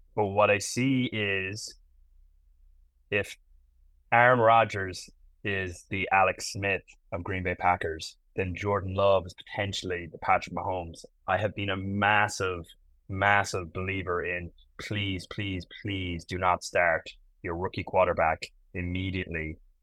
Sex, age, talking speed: male, 20-39, 125 wpm